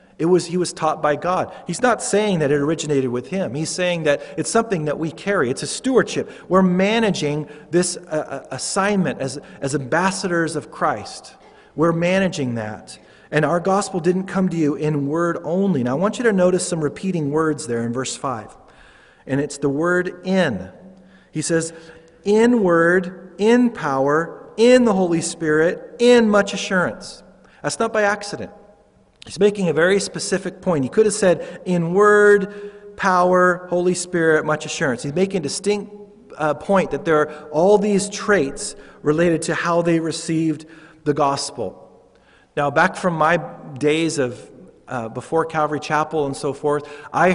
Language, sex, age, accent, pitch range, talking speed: English, male, 40-59, American, 150-190 Hz, 170 wpm